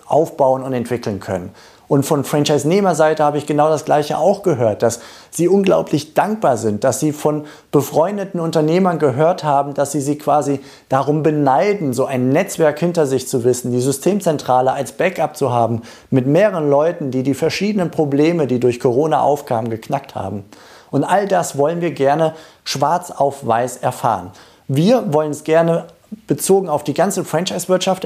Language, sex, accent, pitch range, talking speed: German, male, German, 135-175 Hz, 165 wpm